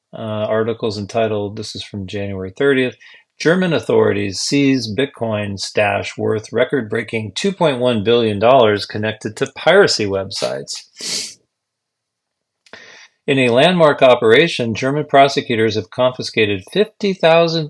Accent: American